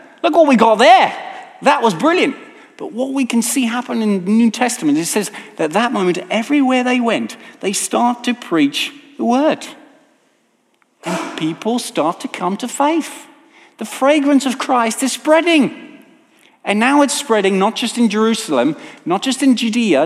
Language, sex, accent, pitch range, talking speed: English, male, British, 215-295 Hz, 170 wpm